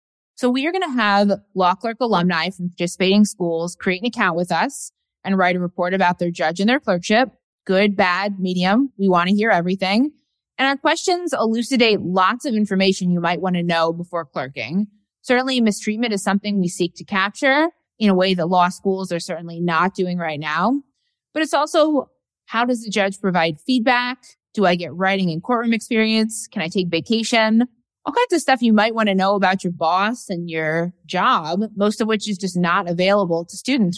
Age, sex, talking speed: 20-39, female, 200 wpm